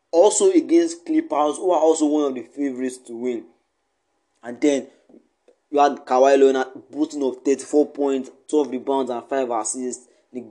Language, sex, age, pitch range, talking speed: English, male, 20-39, 130-165 Hz, 160 wpm